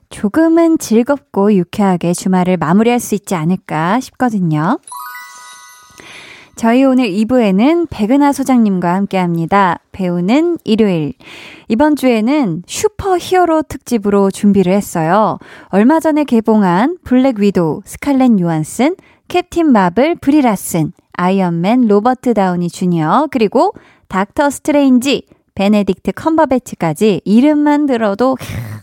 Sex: female